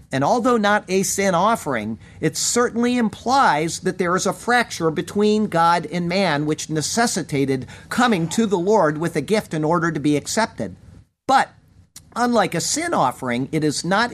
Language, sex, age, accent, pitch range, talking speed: English, male, 50-69, American, 130-190 Hz, 170 wpm